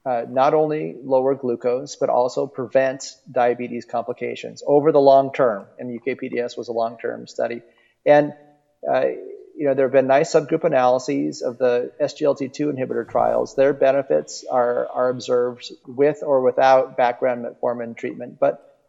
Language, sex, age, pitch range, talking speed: English, male, 30-49, 125-145 Hz, 150 wpm